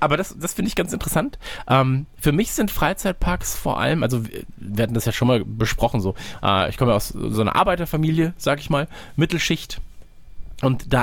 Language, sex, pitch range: German, male, 110-150 Hz